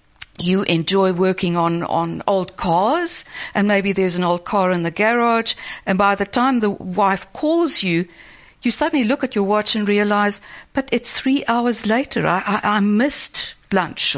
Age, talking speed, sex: 60-79, 180 wpm, female